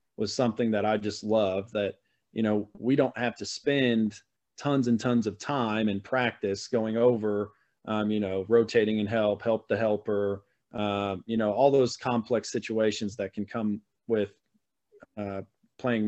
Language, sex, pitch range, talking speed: English, male, 105-120 Hz, 170 wpm